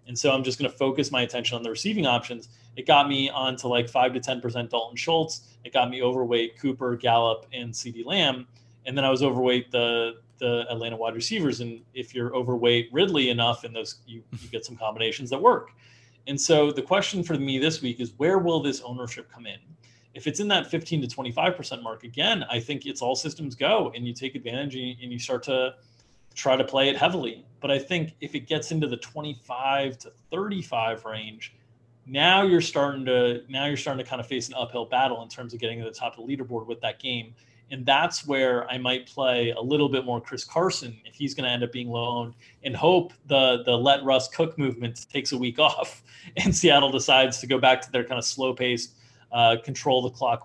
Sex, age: male, 30-49